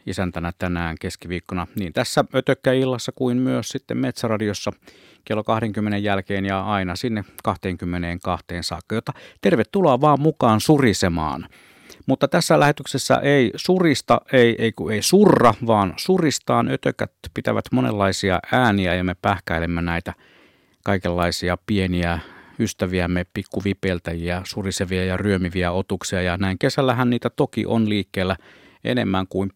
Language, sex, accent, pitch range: Finnish, male, native, 95-130 Hz